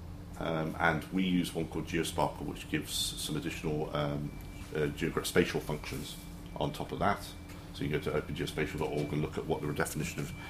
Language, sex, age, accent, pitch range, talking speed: English, male, 40-59, British, 80-95 Hz, 190 wpm